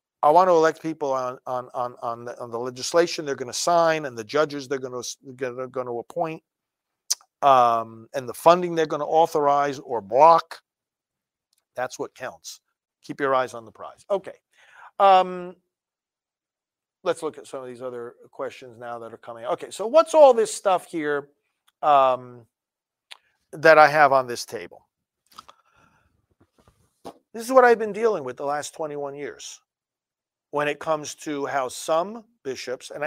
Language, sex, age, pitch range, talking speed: English, male, 50-69, 135-180 Hz, 170 wpm